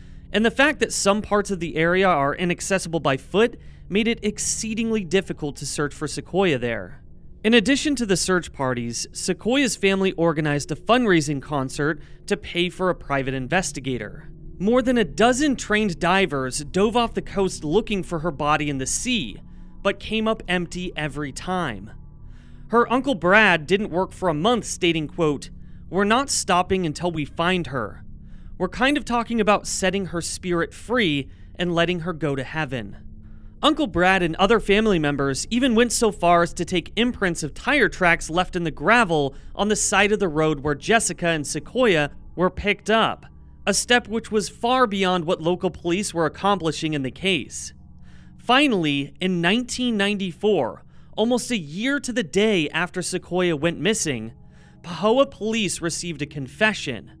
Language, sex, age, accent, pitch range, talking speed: English, male, 30-49, American, 150-210 Hz, 170 wpm